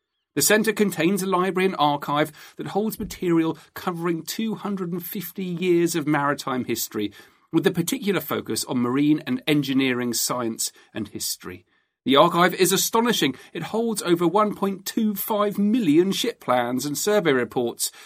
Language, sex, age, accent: English, male, 40-59, British